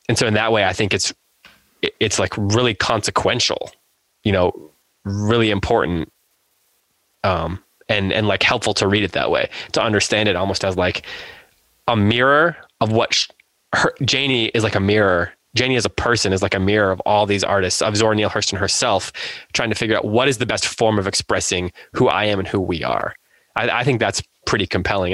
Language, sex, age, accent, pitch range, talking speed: English, male, 20-39, American, 100-125 Hz, 200 wpm